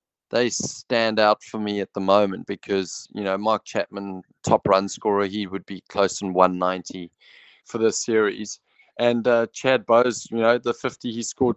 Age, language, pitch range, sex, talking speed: 20-39, English, 100-115 Hz, male, 180 wpm